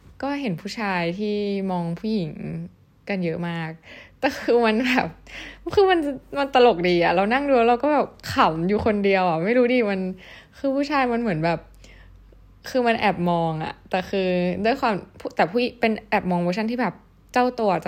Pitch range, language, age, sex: 175-215 Hz, Thai, 10-29, female